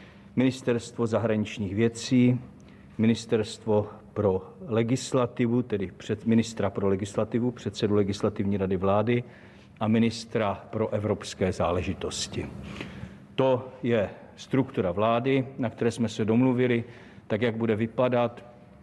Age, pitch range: 50-69, 105-120 Hz